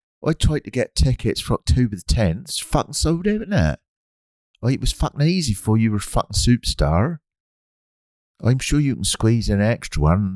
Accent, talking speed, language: British, 210 wpm, English